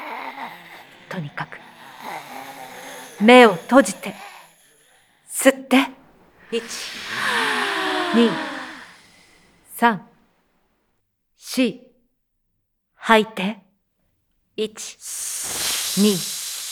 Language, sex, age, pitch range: Japanese, female, 40-59, 195-280 Hz